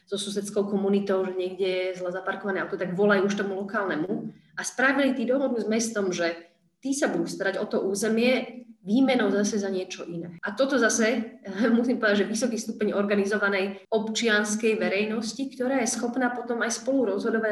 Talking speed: 170 wpm